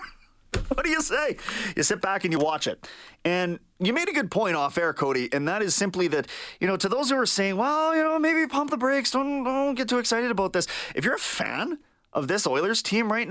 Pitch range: 155-220 Hz